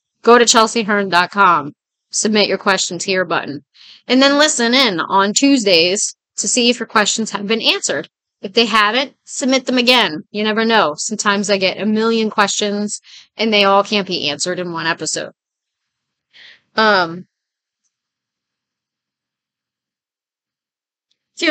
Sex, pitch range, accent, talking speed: female, 190-240 Hz, American, 130 wpm